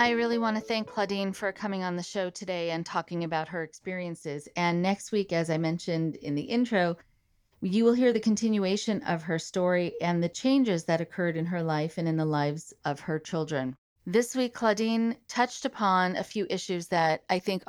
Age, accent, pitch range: 40-59, American, 160-210 Hz